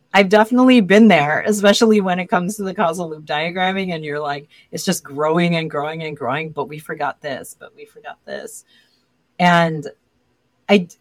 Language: English